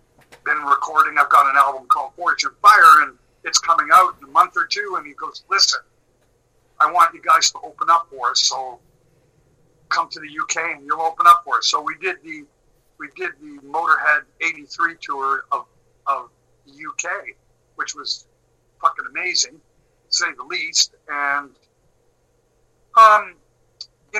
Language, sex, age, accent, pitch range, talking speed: English, male, 50-69, American, 155-175 Hz, 170 wpm